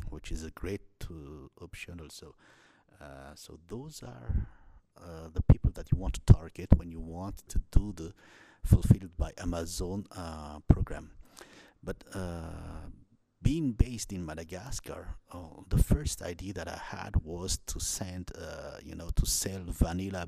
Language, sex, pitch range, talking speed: English, male, 80-95 Hz, 150 wpm